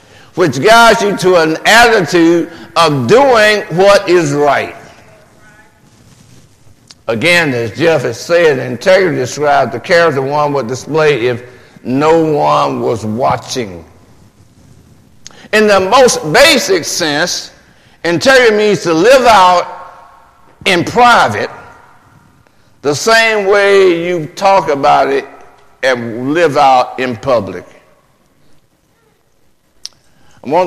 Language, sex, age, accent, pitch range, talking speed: English, male, 50-69, American, 130-190 Hz, 105 wpm